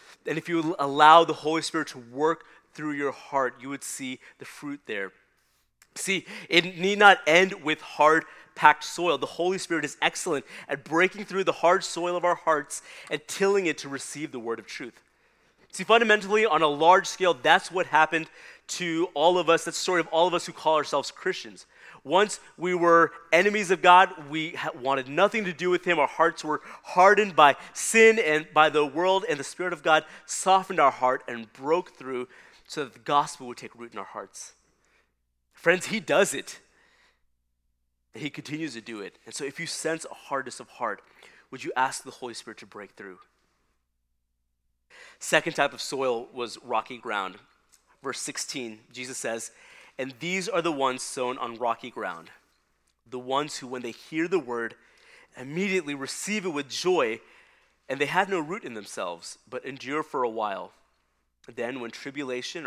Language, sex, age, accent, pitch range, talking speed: English, male, 30-49, American, 125-180 Hz, 185 wpm